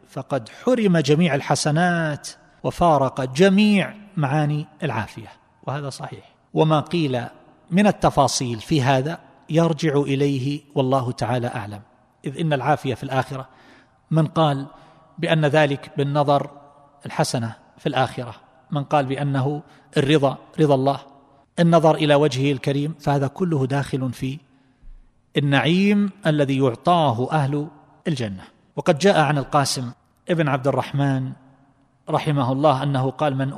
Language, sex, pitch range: Arabic, male, 130-160 Hz